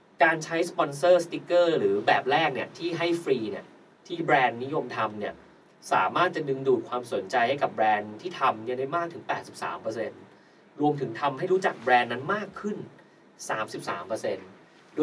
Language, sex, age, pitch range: Thai, male, 30-49, 125-170 Hz